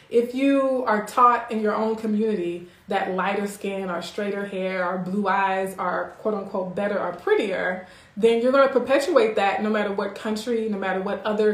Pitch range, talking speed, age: 190-220 Hz, 185 wpm, 20-39